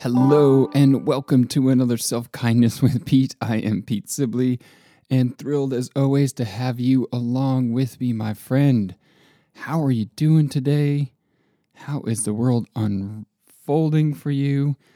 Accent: American